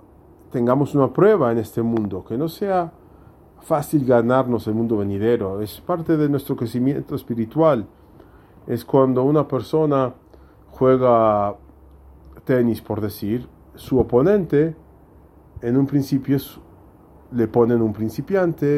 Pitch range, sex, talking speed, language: 110-145 Hz, male, 120 wpm, English